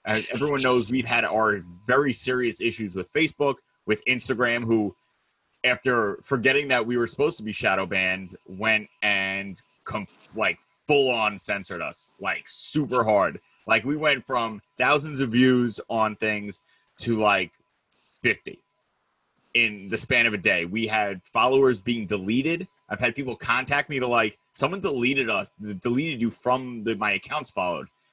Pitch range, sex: 110-140 Hz, male